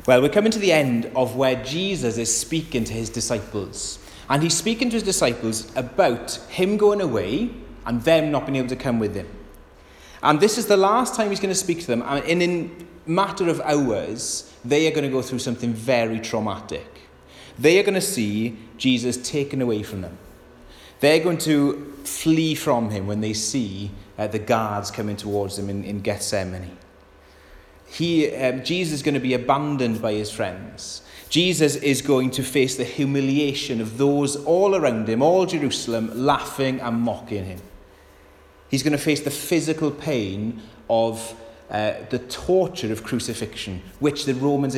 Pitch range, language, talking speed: 105-145 Hz, English, 180 wpm